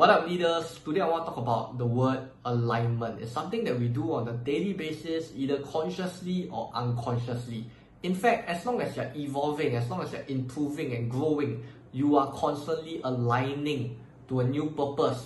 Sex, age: male, 20-39